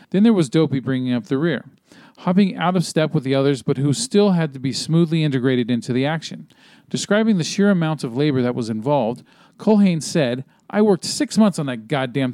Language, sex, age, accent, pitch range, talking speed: English, male, 40-59, American, 130-165 Hz, 215 wpm